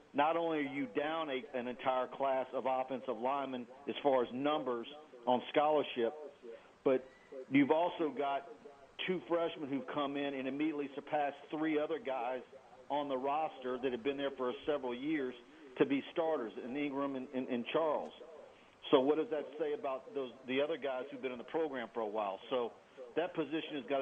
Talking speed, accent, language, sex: 185 wpm, American, English, male